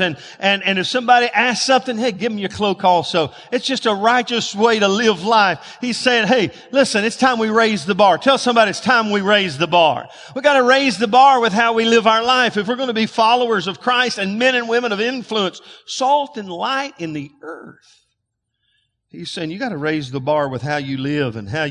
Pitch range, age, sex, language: 145-220 Hz, 50-69, male, English